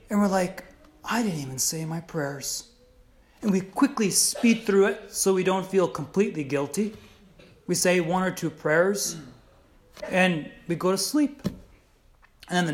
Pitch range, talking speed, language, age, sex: 135-200 Hz, 165 wpm, English, 30-49, male